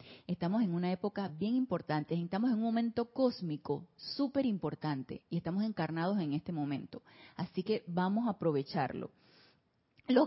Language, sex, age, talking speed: Spanish, female, 30-49, 145 wpm